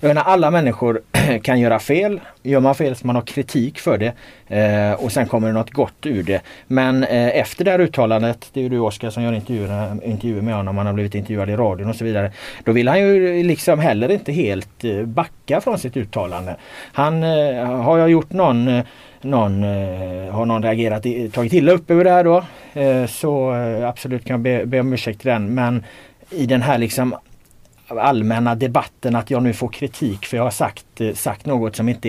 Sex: male